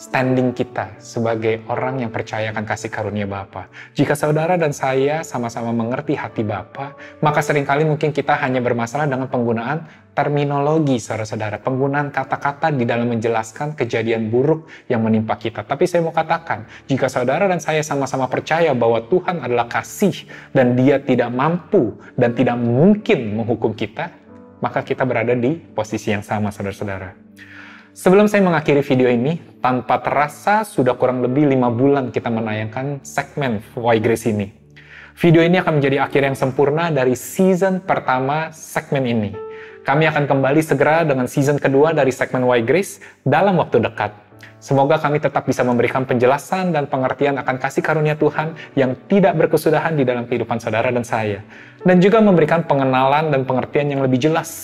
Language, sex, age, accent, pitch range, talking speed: Indonesian, male, 20-39, native, 115-150 Hz, 155 wpm